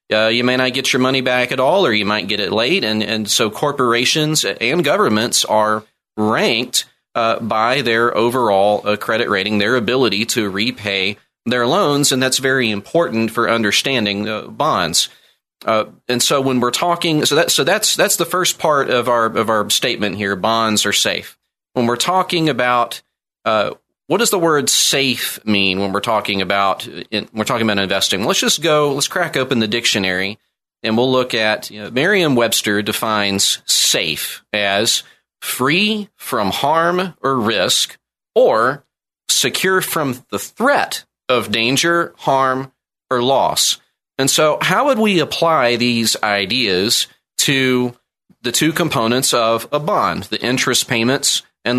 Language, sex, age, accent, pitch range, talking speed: English, male, 30-49, American, 105-140 Hz, 160 wpm